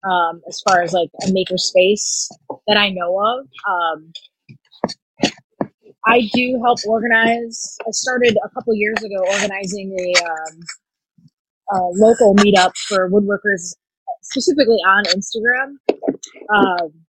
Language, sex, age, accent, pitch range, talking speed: English, female, 30-49, American, 180-230 Hz, 120 wpm